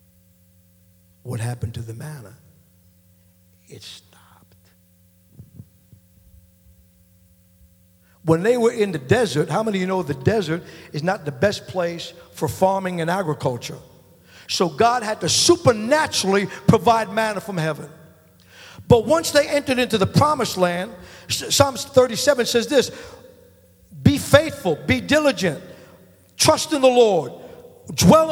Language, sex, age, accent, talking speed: English, male, 60-79, American, 125 wpm